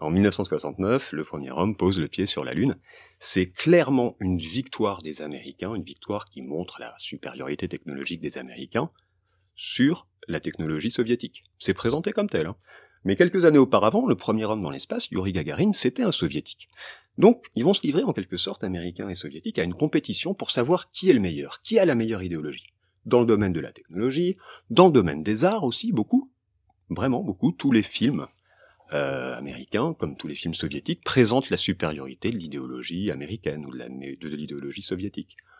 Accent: French